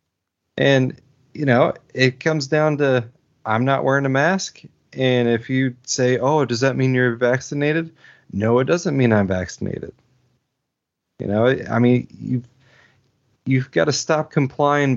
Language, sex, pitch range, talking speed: English, male, 115-140 Hz, 150 wpm